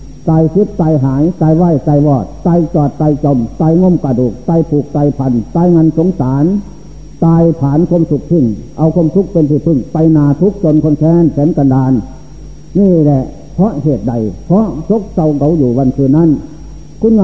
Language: Thai